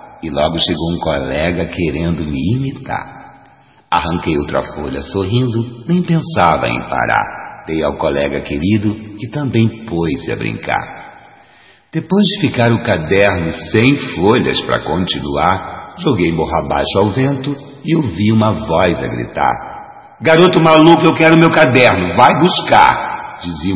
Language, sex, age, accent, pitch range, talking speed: Portuguese, male, 60-79, Brazilian, 85-125 Hz, 135 wpm